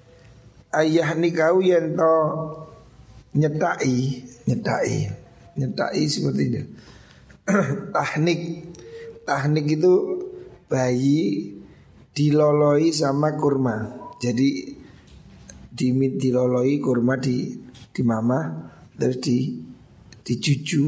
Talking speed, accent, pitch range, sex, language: 75 wpm, native, 130-160 Hz, male, Indonesian